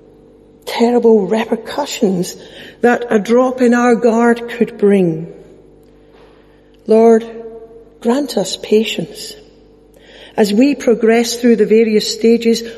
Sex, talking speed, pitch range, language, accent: female, 100 wpm, 210-240 Hz, English, British